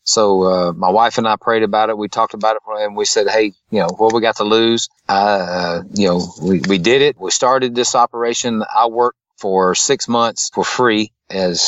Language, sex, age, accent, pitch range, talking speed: English, male, 40-59, American, 95-120 Hz, 230 wpm